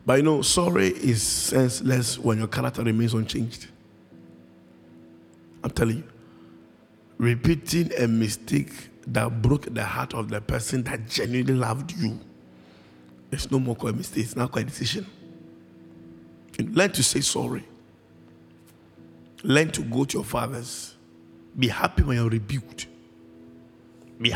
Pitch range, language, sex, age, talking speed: 80-120 Hz, English, male, 50-69, 135 wpm